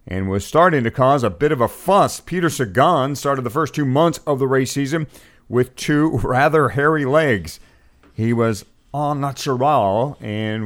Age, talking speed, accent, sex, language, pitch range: 50-69, 175 wpm, American, male, English, 100-140 Hz